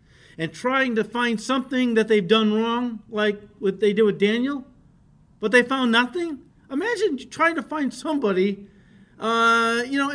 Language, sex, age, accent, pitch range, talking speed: English, male, 50-69, American, 175-235 Hz, 160 wpm